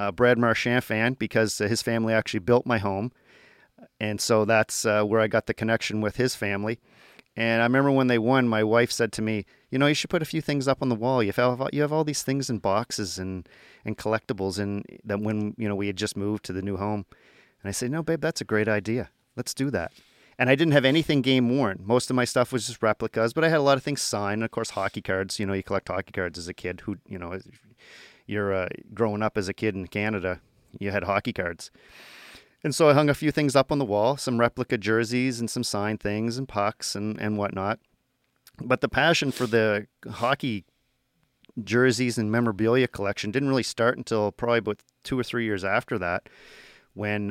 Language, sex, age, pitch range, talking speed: English, male, 40-59, 105-125 Hz, 230 wpm